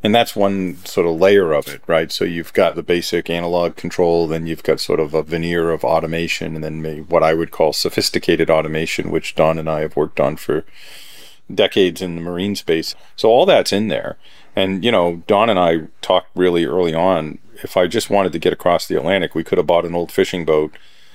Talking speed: 220 wpm